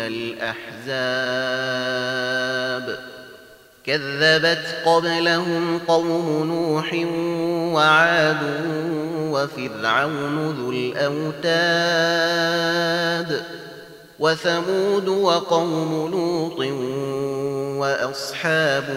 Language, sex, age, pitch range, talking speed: Arabic, male, 30-49, 145-170 Hz, 40 wpm